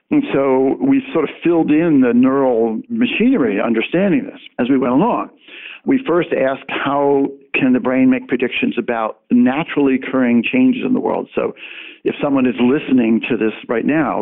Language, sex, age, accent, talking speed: English, male, 60-79, American, 175 wpm